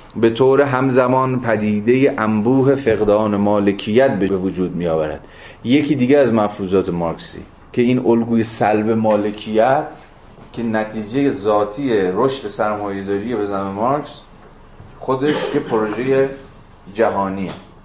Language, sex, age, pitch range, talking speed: Persian, male, 30-49, 100-125 Hz, 110 wpm